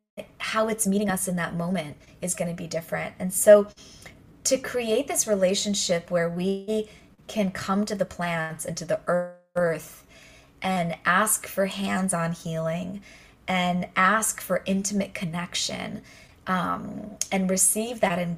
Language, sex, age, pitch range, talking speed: English, female, 20-39, 180-215 Hz, 145 wpm